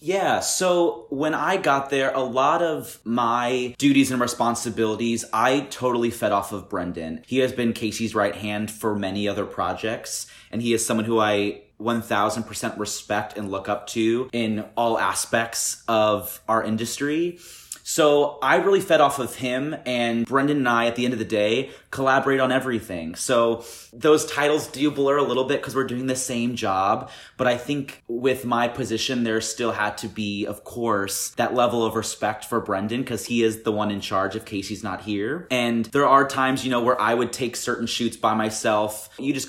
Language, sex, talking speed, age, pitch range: English, male, 195 wpm, 30-49, 105-130 Hz